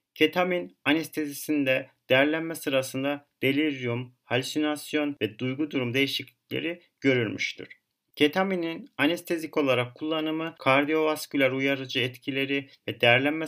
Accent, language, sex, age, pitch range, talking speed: native, Turkish, male, 40-59, 130-150 Hz, 90 wpm